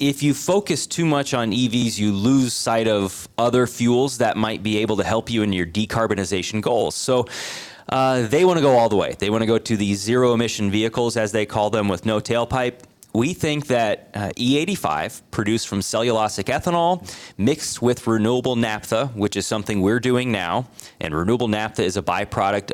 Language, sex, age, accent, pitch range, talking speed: English, male, 30-49, American, 105-130 Hz, 195 wpm